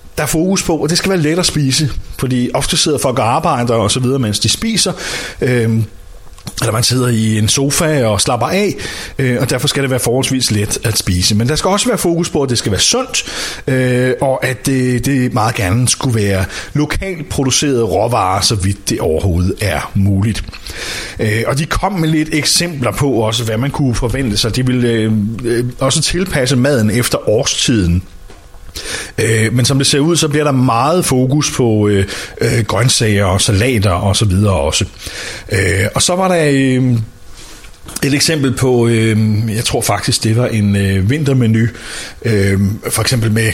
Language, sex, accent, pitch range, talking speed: Danish, male, native, 105-135 Hz, 180 wpm